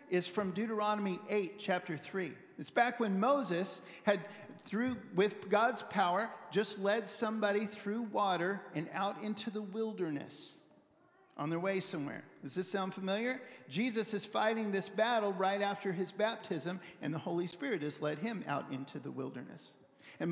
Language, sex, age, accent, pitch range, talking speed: English, male, 50-69, American, 175-230 Hz, 160 wpm